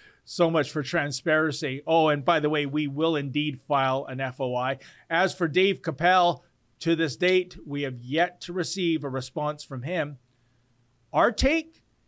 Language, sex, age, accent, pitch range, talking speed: English, male, 40-59, American, 140-200 Hz, 165 wpm